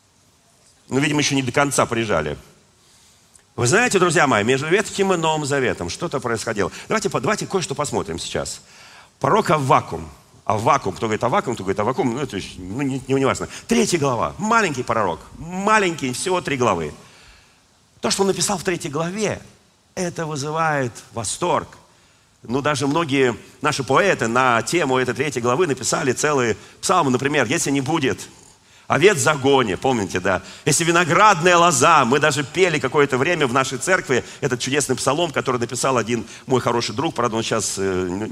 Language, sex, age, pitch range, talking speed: Russian, male, 40-59, 120-180 Hz, 160 wpm